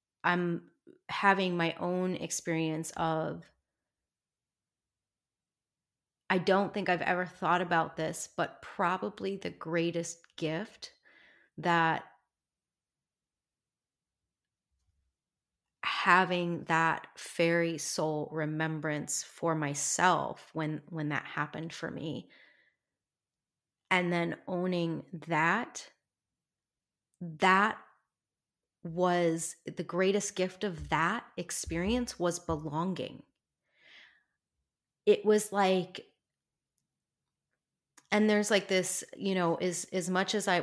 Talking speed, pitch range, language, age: 90 wpm, 160-190 Hz, English, 30-49